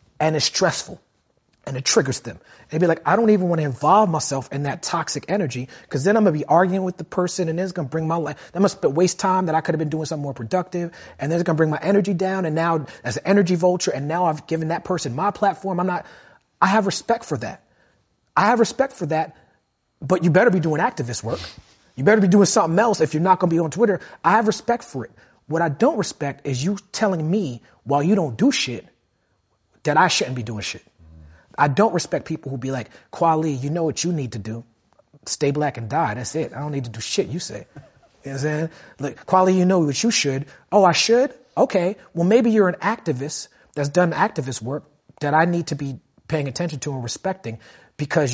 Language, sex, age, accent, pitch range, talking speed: Hindi, male, 30-49, American, 140-185 Hz, 245 wpm